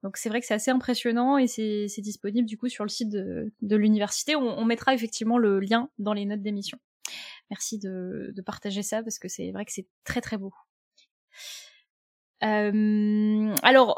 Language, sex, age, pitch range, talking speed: French, female, 10-29, 210-250 Hz, 190 wpm